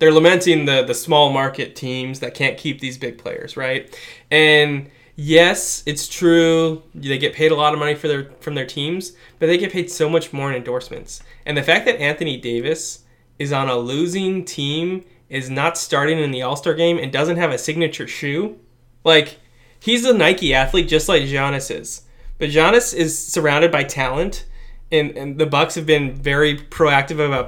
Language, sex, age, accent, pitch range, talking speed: English, male, 20-39, American, 130-170 Hz, 190 wpm